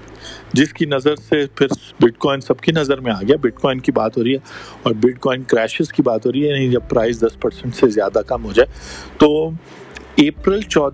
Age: 50-69